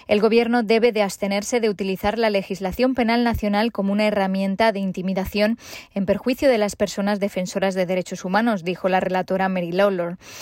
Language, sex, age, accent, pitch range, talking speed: Spanish, female, 20-39, Spanish, 185-220 Hz, 175 wpm